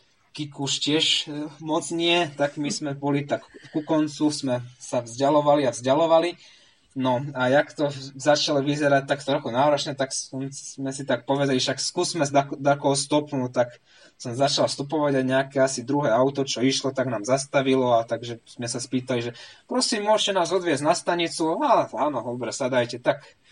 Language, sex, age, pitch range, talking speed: Slovak, male, 20-39, 130-170 Hz, 170 wpm